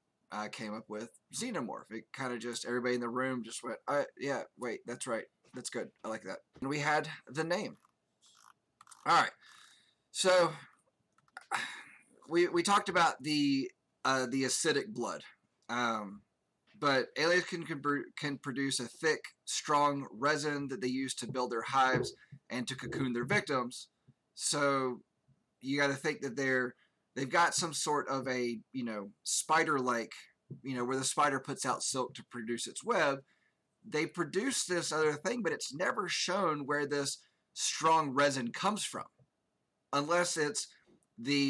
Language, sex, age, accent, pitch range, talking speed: English, male, 20-39, American, 125-155 Hz, 160 wpm